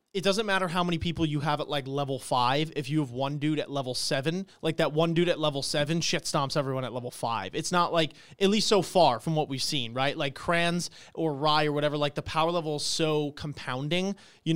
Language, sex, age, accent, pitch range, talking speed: English, male, 30-49, American, 130-165 Hz, 245 wpm